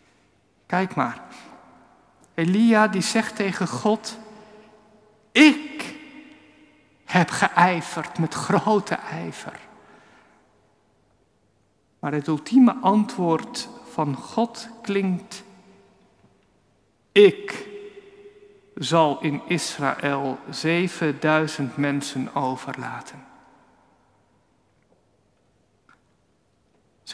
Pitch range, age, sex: 160-215 Hz, 50-69, male